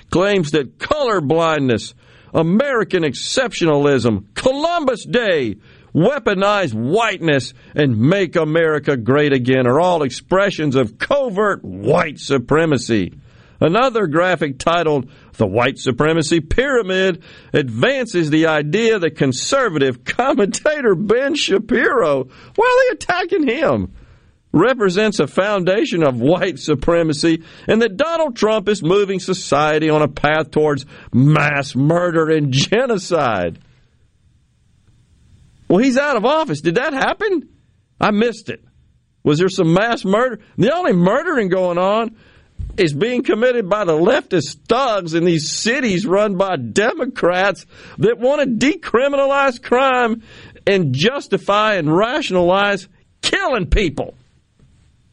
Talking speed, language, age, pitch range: 115 wpm, English, 50-69, 150-225 Hz